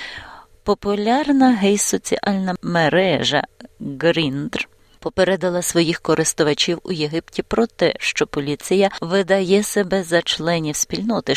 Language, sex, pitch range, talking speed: Ukrainian, female, 155-200 Hz, 95 wpm